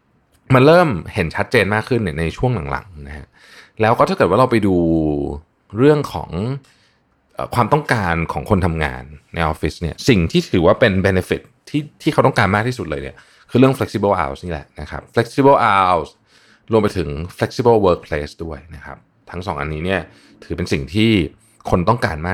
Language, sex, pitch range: Thai, male, 80-110 Hz